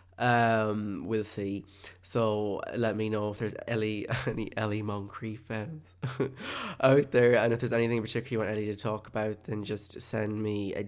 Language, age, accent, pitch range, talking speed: English, 20-39, British, 110-125 Hz, 180 wpm